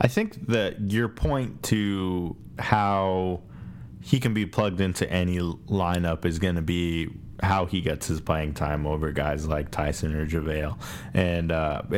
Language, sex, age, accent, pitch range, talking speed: English, male, 20-39, American, 90-105 Hz, 160 wpm